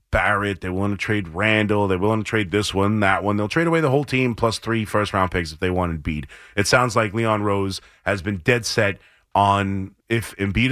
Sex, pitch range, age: male, 105-135 Hz, 30-49